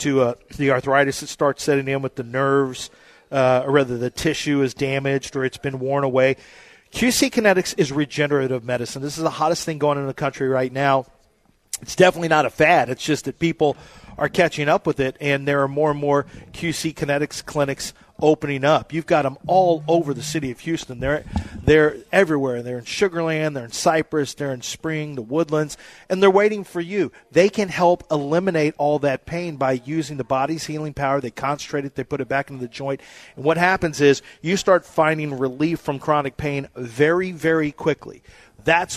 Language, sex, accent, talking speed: English, male, American, 200 wpm